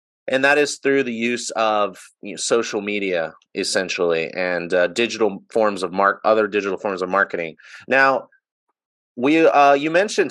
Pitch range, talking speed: 105-120 Hz, 165 wpm